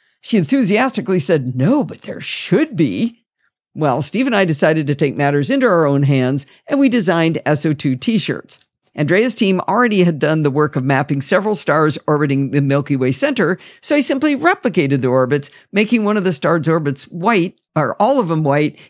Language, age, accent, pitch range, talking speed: English, 50-69, American, 145-215 Hz, 185 wpm